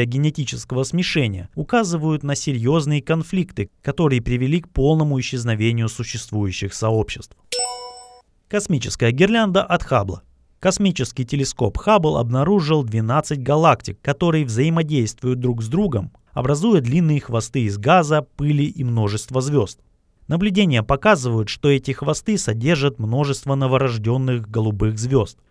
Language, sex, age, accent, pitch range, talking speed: Russian, male, 30-49, native, 110-155 Hz, 110 wpm